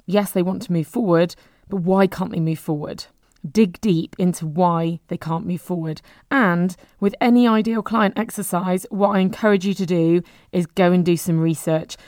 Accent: British